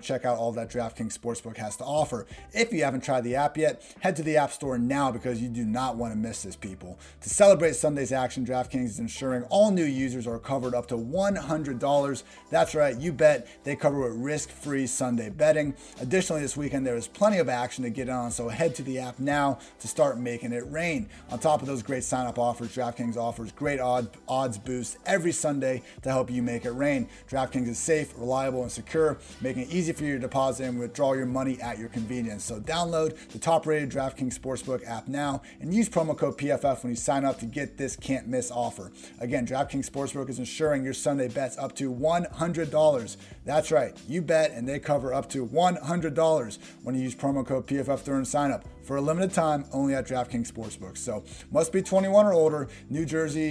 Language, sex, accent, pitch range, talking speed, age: English, male, American, 125-150 Hz, 210 wpm, 30-49